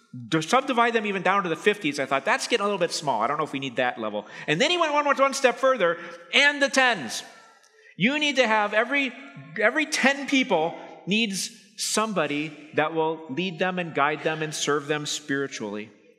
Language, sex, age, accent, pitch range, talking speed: English, male, 40-59, American, 155-230 Hz, 210 wpm